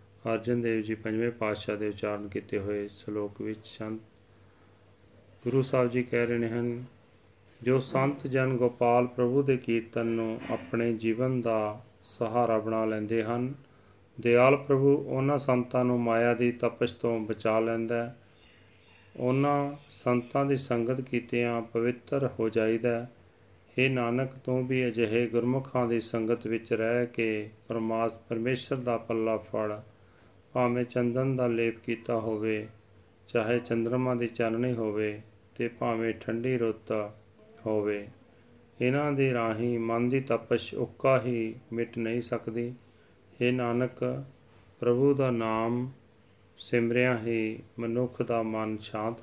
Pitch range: 110-125 Hz